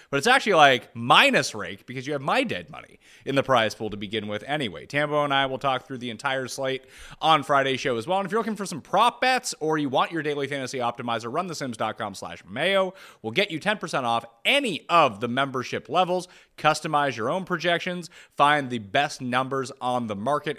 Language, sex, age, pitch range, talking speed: English, male, 30-49, 135-200 Hz, 220 wpm